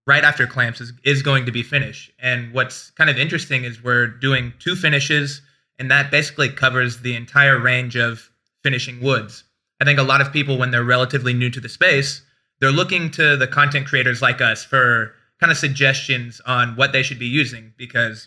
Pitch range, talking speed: 120-140 Hz, 200 wpm